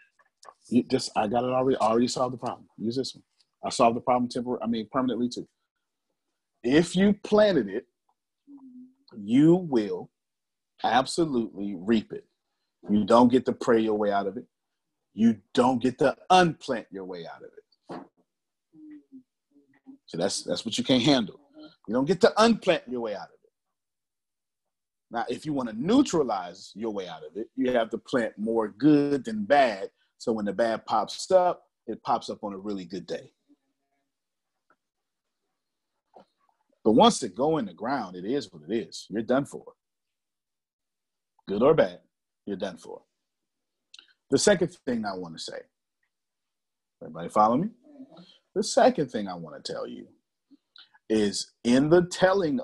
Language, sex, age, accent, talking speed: English, male, 40-59, American, 160 wpm